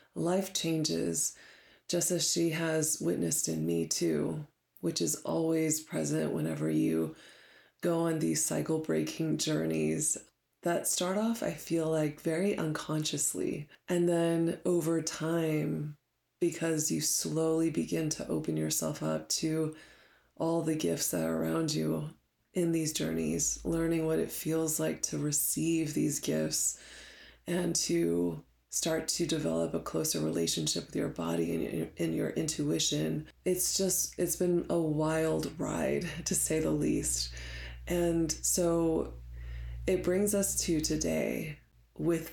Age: 20-39